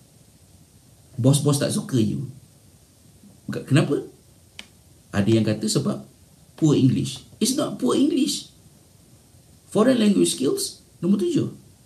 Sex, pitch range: male, 120-175 Hz